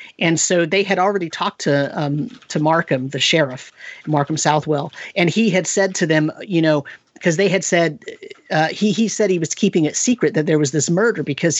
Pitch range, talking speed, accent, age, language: 155-180 Hz, 210 wpm, American, 40-59, English